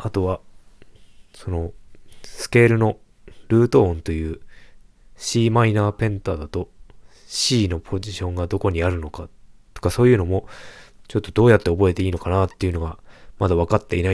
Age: 20-39